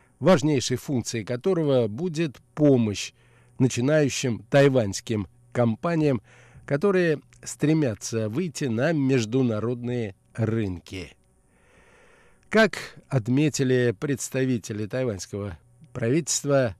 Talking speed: 70 wpm